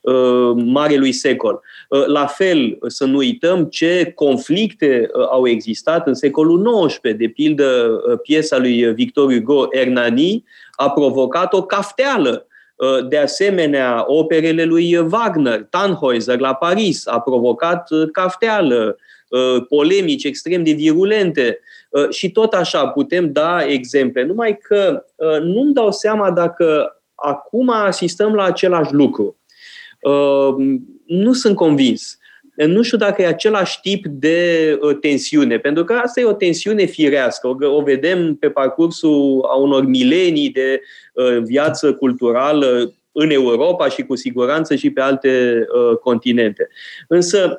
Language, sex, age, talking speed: Romanian, male, 30-49, 120 wpm